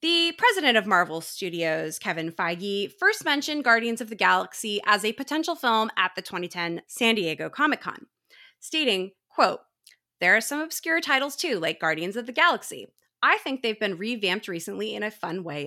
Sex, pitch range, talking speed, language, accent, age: female, 185-285 Hz, 175 wpm, English, American, 20-39